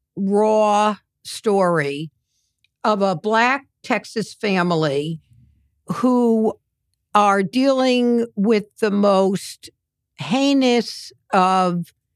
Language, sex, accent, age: English, female, American, 60-79